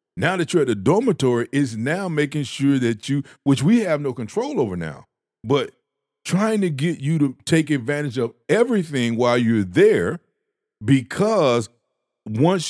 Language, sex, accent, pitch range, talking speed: English, male, American, 120-165 Hz, 160 wpm